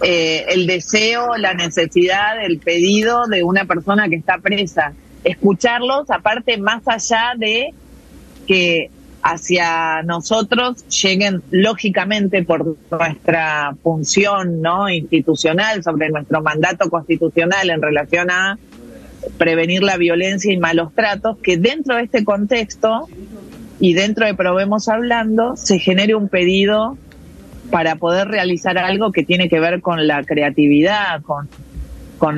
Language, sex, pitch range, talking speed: Spanish, female, 160-205 Hz, 125 wpm